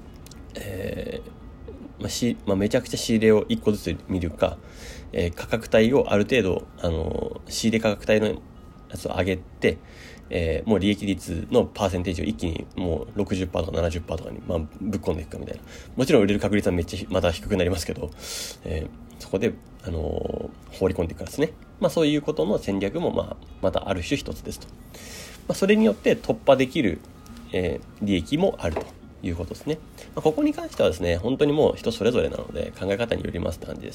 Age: 30-49